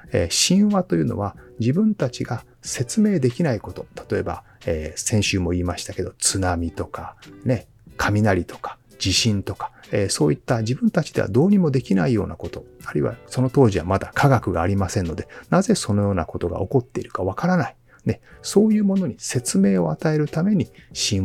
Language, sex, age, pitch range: Japanese, male, 30-49, 90-135 Hz